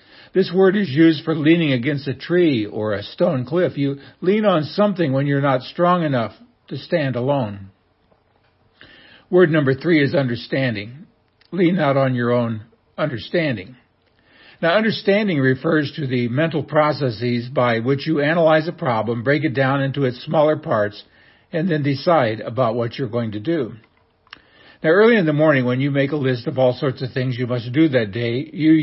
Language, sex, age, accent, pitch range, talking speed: English, male, 60-79, American, 125-165 Hz, 180 wpm